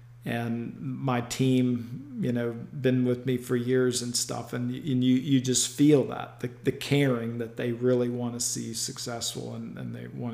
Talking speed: 185 wpm